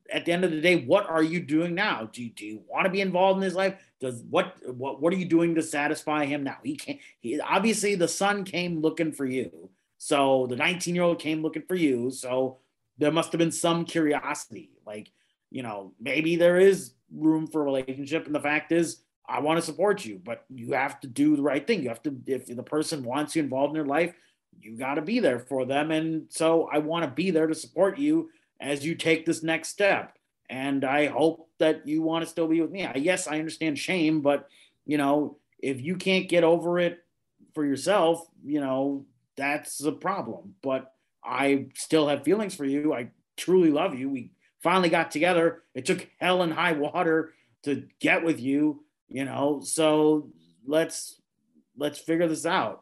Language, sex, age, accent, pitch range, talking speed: English, male, 30-49, American, 140-175 Hz, 210 wpm